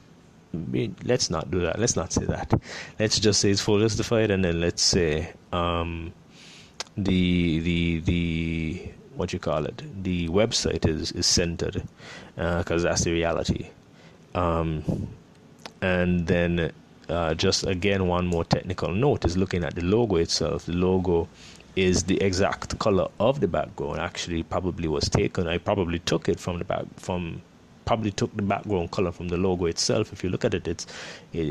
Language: English